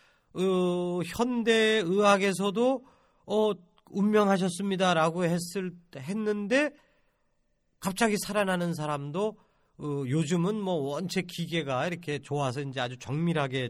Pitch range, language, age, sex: 150-210 Hz, Korean, 40-59, male